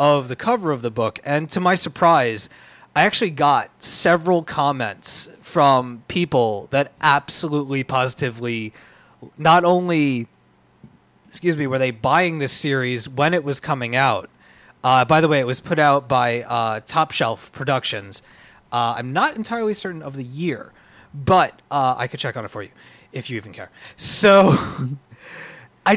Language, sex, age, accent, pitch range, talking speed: English, male, 30-49, American, 130-175 Hz, 160 wpm